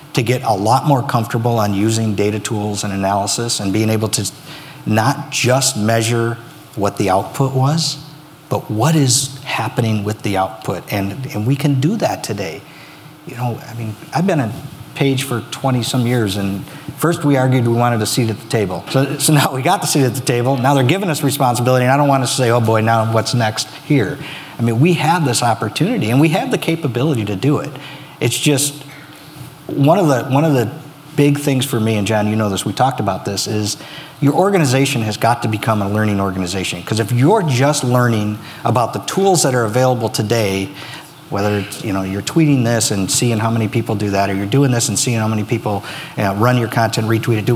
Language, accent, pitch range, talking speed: English, American, 110-145 Hz, 220 wpm